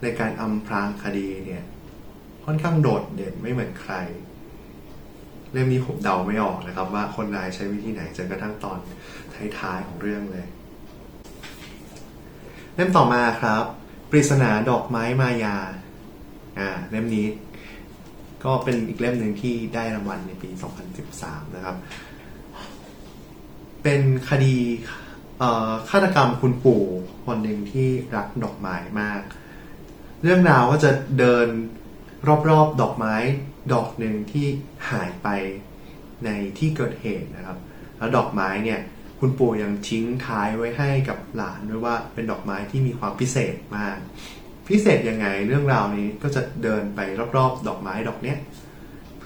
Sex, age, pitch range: male, 20-39, 105-130 Hz